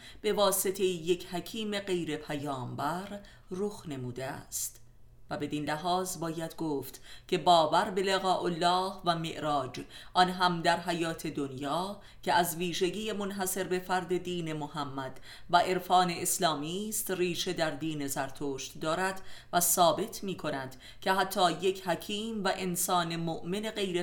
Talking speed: 135 wpm